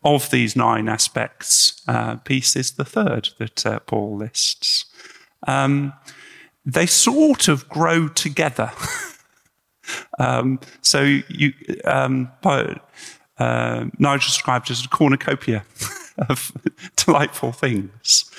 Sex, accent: male, British